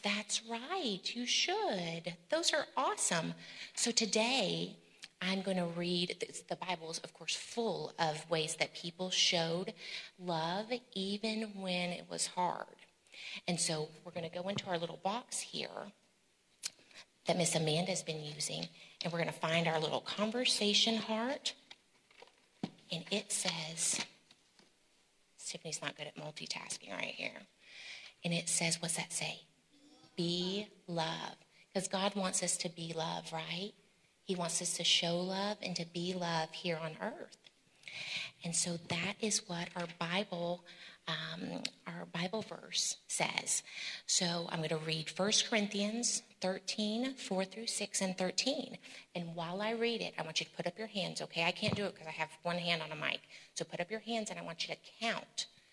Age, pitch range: 30-49, 170-210 Hz